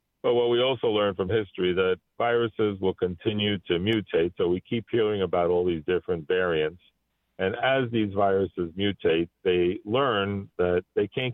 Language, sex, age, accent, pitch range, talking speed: English, male, 50-69, American, 90-115 Hz, 170 wpm